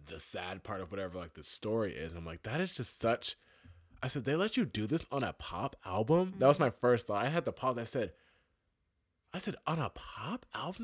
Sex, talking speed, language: male, 245 wpm, English